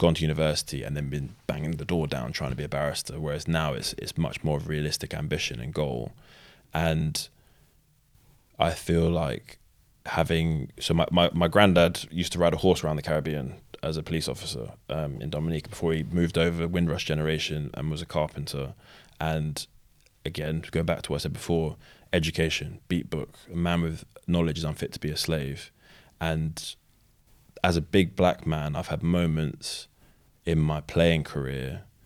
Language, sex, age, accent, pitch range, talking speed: English, male, 20-39, British, 75-85 Hz, 185 wpm